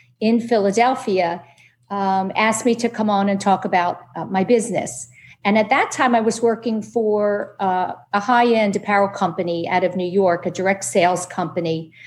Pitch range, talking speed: 185-230 Hz, 175 wpm